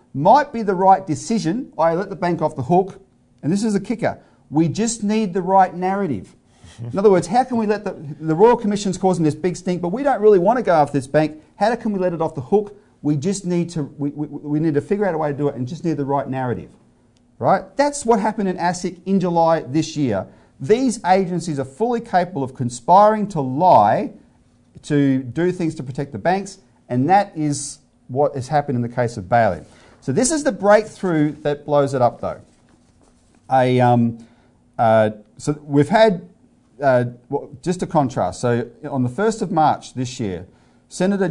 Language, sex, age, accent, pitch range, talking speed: English, male, 40-59, Australian, 125-185 Hz, 210 wpm